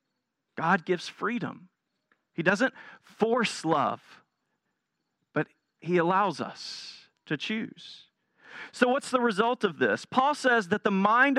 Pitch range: 180-235 Hz